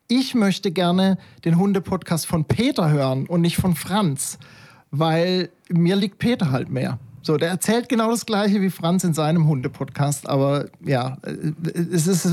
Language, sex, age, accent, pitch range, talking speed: German, male, 40-59, German, 135-170 Hz, 155 wpm